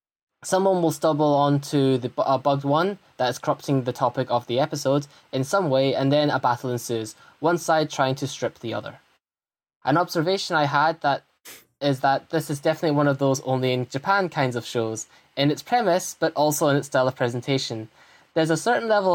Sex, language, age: male, English, 10-29